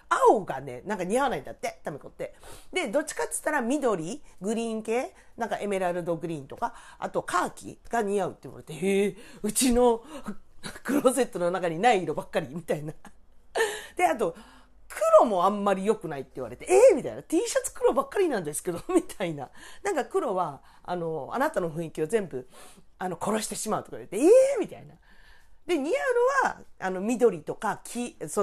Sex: female